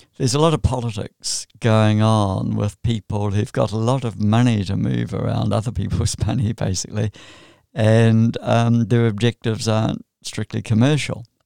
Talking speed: 150 wpm